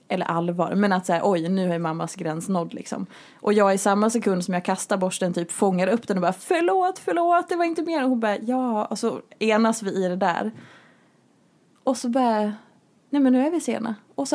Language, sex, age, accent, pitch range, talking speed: Swedish, female, 20-39, Norwegian, 205-265 Hz, 230 wpm